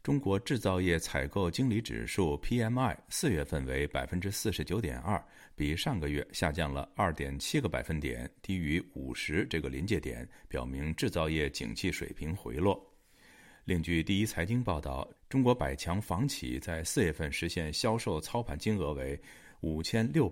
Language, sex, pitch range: Chinese, male, 75-100 Hz